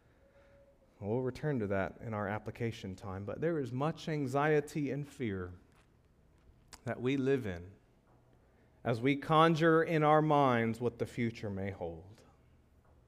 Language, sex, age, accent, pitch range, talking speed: English, male, 30-49, American, 110-170 Hz, 140 wpm